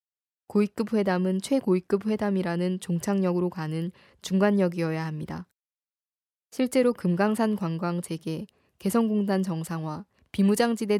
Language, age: Korean, 20-39